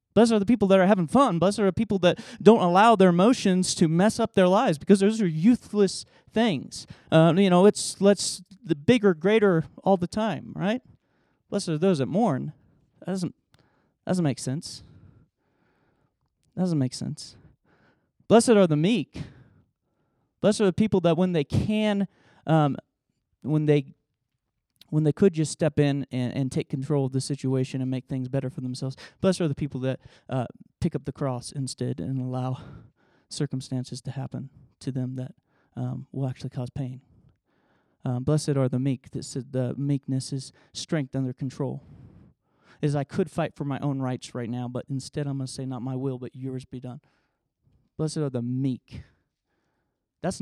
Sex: male